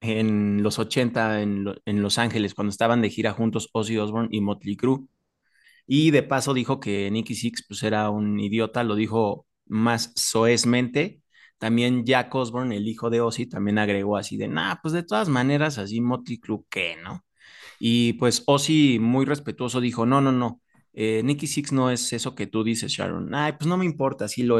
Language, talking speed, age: Spanish, 195 wpm, 20-39